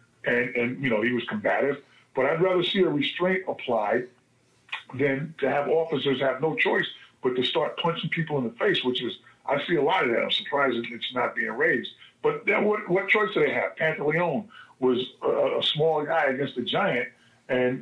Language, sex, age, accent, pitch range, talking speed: English, male, 50-69, American, 125-175 Hz, 210 wpm